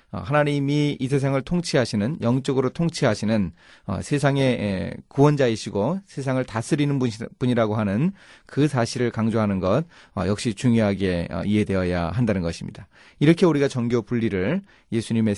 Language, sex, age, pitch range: Korean, male, 30-49, 105-145 Hz